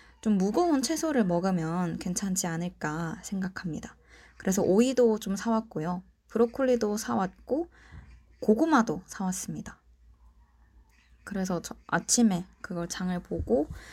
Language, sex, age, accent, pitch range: Korean, female, 20-39, native, 175-235 Hz